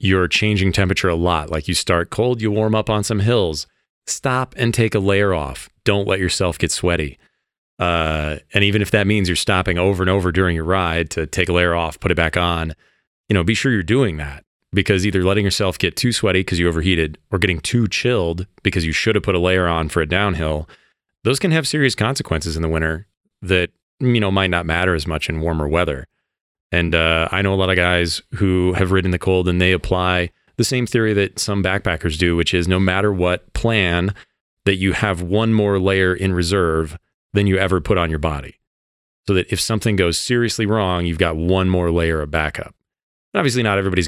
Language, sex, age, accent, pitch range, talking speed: English, male, 30-49, American, 85-100 Hz, 220 wpm